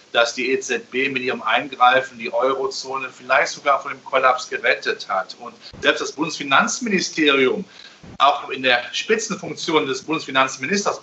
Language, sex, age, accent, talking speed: German, male, 40-59, German, 135 wpm